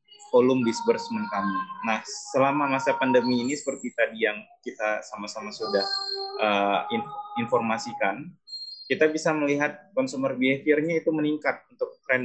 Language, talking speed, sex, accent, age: Indonesian, 120 wpm, male, native, 20-39